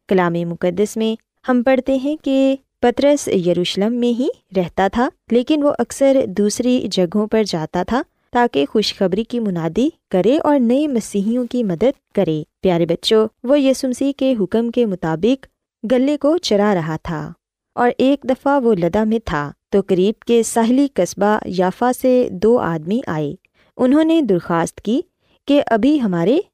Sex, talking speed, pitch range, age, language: female, 155 wpm, 180-260 Hz, 20-39, Urdu